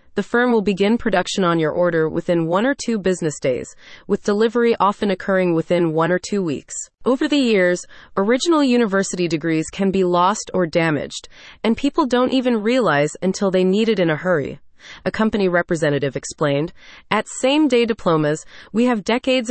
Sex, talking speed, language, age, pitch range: female, 175 wpm, English, 30-49, 170-225 Hz